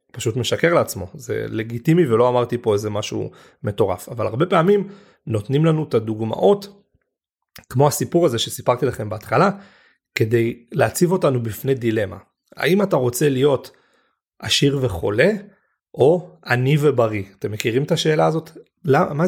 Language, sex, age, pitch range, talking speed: Hebrew, male, 30-49, 115-170 Hz, 130 wpm